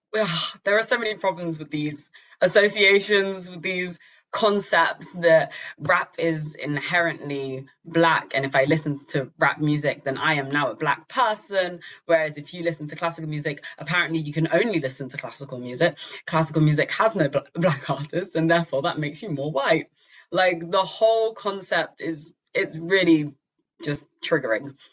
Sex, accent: female, British